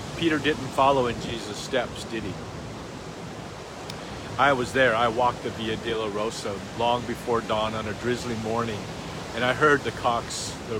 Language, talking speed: English, 170 wpm